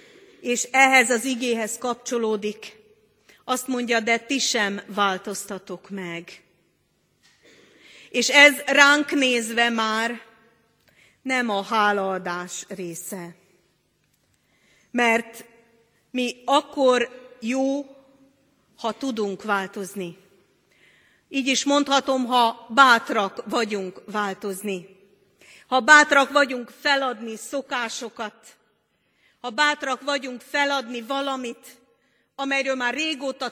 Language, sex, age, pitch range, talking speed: Hungarian, female, 40-59, 205-270 Hz, 85 wpm